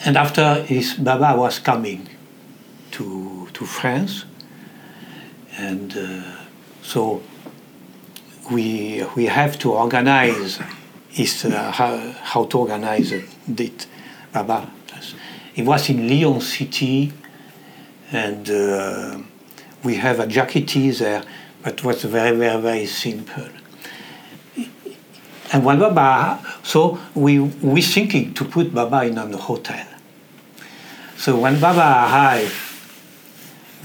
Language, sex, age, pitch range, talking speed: English, male, 60-79, 115-145 Hz, 110 wpm